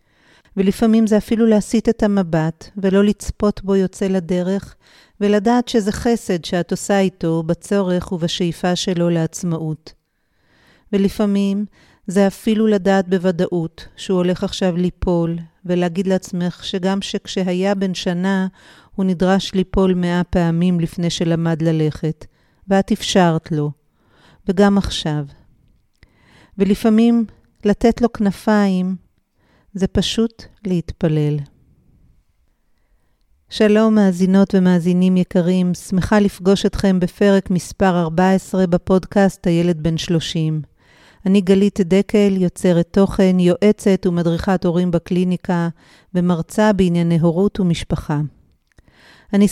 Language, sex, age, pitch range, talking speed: Hebrew, female, 50-69, 170-200 Hz, 100 wpm